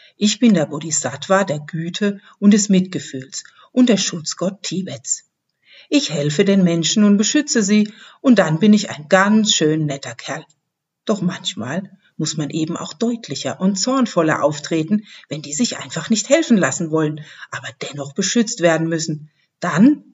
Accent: German